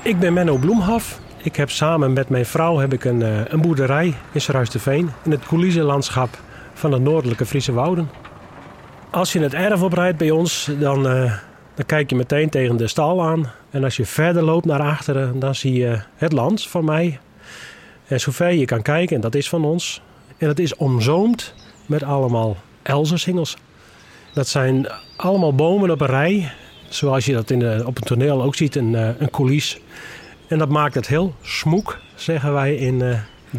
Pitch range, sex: 125-160 Hz, male